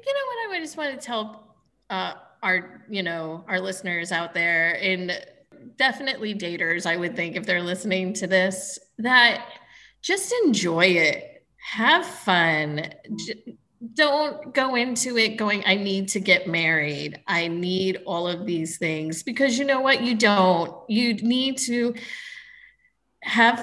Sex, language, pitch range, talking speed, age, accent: female, English, 180-245 Hz, 150 wpm, 30-49, American